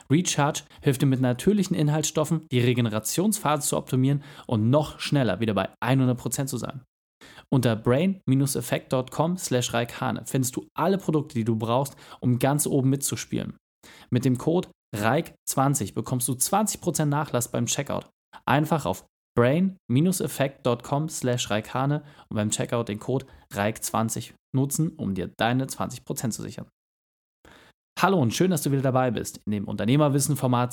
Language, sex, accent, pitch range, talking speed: German, male, German, 115-145 Hz, 135 wpm